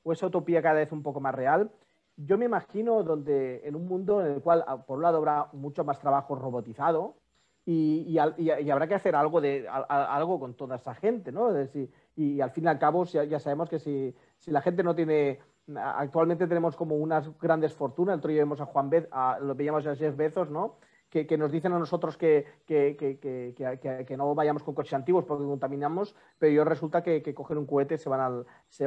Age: 30-49